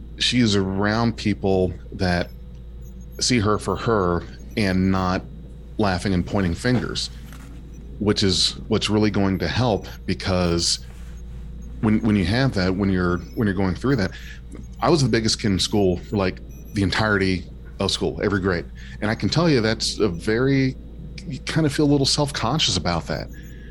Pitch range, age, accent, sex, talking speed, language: 70-105 Hz, 40-59, American, male, 165 wpm, English